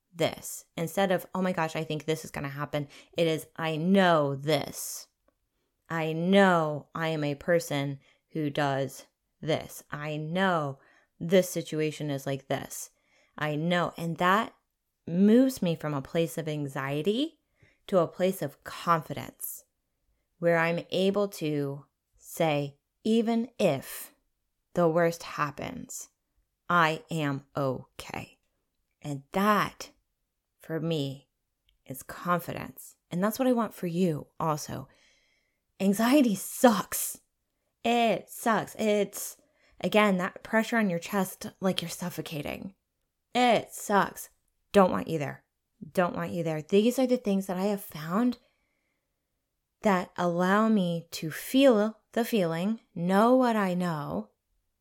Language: English